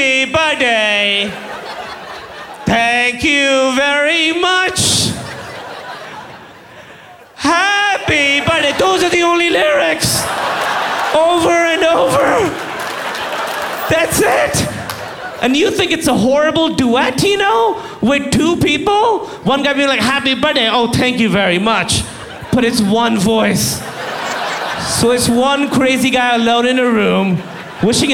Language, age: English, 30-49